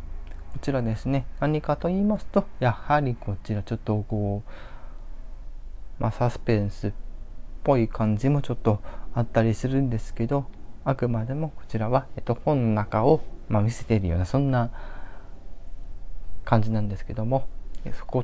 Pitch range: 100-125 Hz